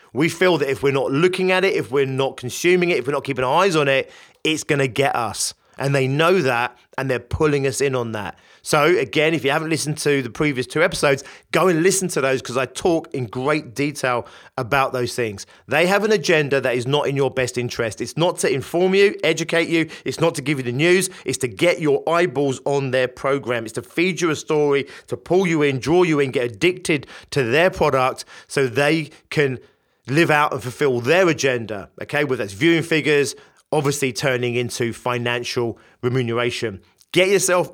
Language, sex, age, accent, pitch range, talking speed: English, male, 30-49, British, 125-165 Hz, 215 wpm